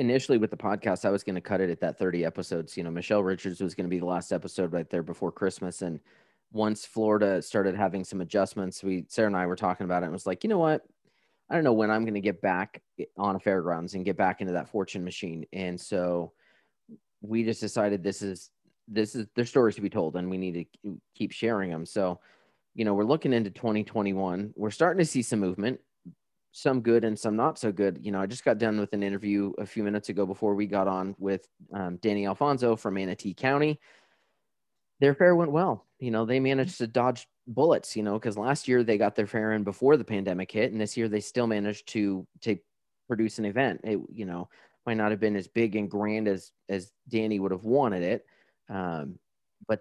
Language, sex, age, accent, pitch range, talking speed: English, male, 30-49, American, 95-115 Hz, 230 wpm